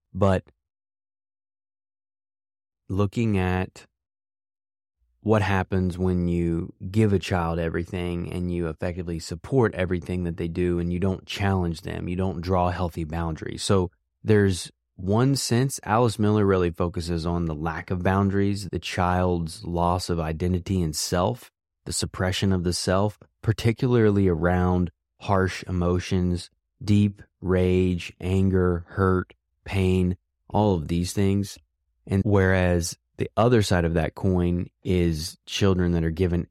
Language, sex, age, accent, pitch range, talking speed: English, male, 20-39, American, 85-100 Hz, 130 wpm